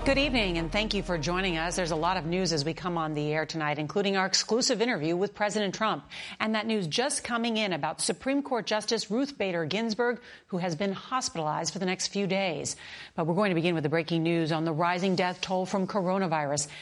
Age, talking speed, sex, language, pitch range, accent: 40-59, 230 wpm, female, English, 170-220 Hz, American